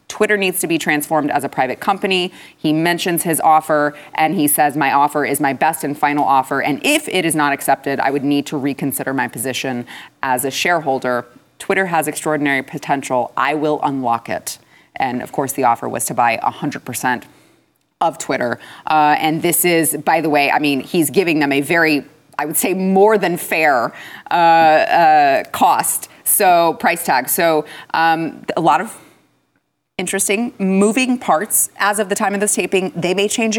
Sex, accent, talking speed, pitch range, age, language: female, American, 190 wpm, 145-180 Hz, 30-49, English